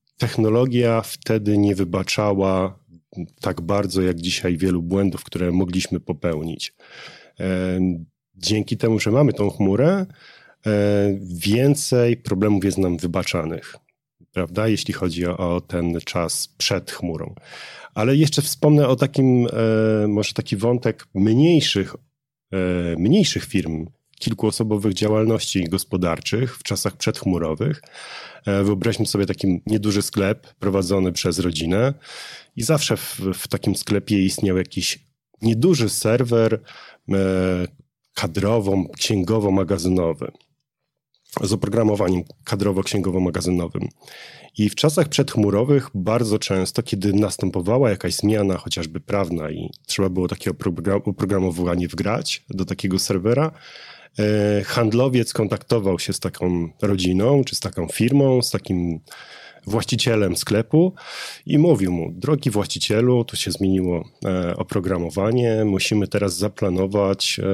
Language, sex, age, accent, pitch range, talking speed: Polish, male, 40-59, native, 95-115 Hz, 105 wpm